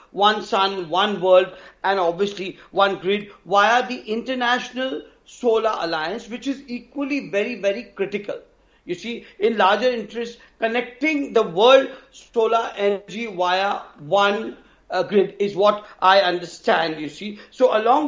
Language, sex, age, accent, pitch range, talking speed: English, male, 50-69, Indian, 200-245 Hz, 135 wpm